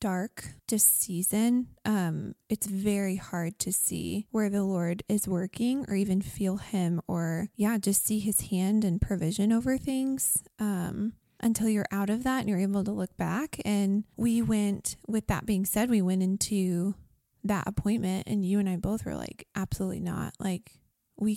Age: 20-39